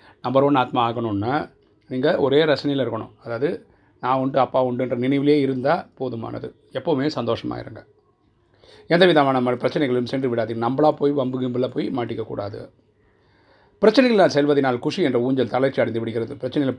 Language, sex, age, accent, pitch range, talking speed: Tamil, male, 30-49, native, 115-135 Hz, 130 wpm